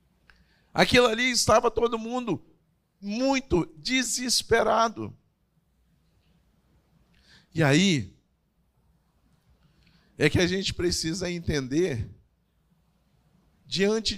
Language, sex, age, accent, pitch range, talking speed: Portuguese, male, 50-69, Brazilian, 150-215 Hz, 70 wpm